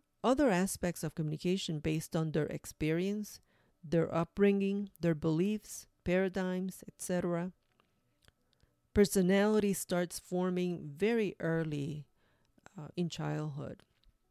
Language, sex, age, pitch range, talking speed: English, female, 40-59, 160-200 Hz, 90 wpm